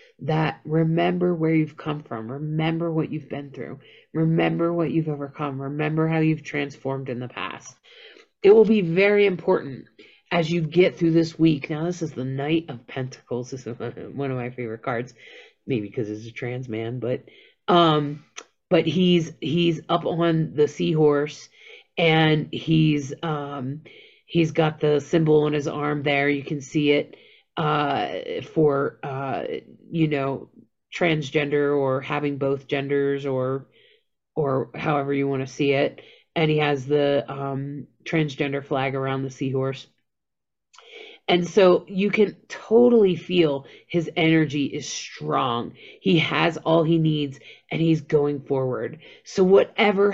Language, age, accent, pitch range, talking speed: English, 30-49, American, 140-170 Hz, 150 wpm